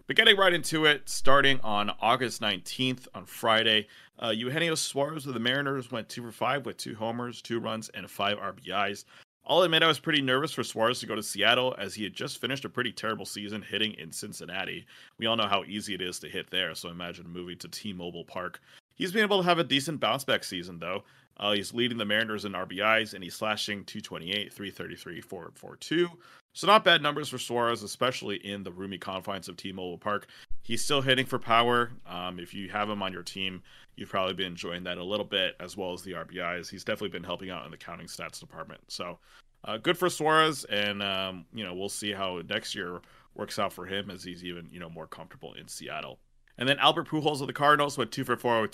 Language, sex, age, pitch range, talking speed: English, male, 30-49, 95-130 Hz, 220 wpm